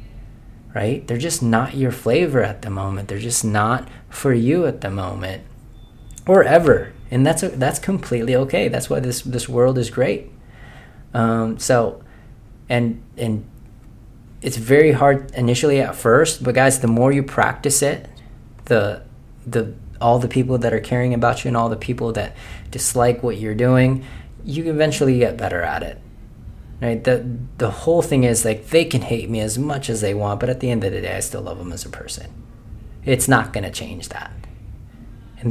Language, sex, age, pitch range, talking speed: English, male, 20-39, 105-125 Hz, 190 wpm